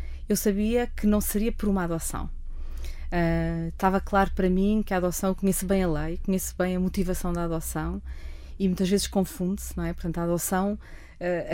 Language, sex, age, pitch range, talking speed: Portuguese, female, 20-39, 170-205 Hz, 190 wpm